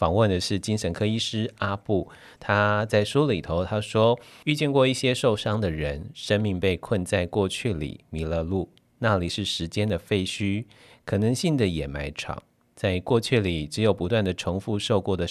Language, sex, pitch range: Chinese, male, 85-115 Hz